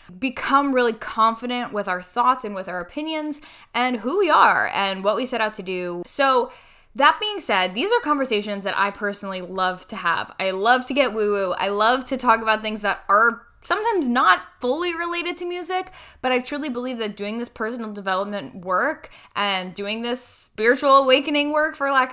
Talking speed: 195 wpm